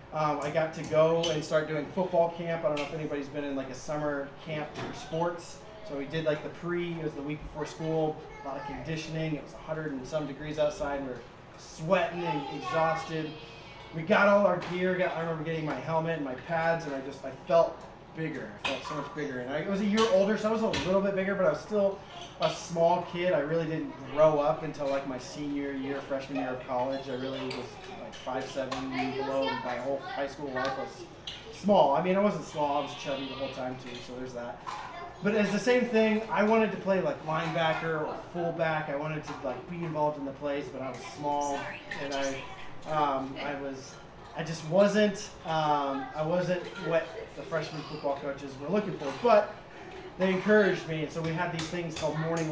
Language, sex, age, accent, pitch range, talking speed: English, male, 20-39, American, 140-180 Hz, 225 wpm